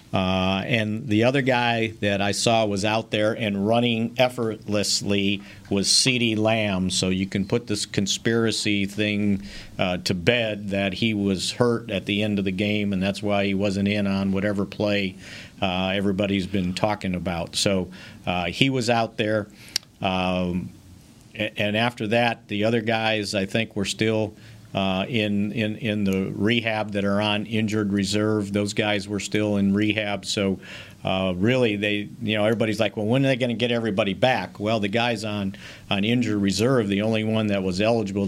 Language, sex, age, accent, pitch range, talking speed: English, male, 50-69, American, 100-110 Hz, 180 wpm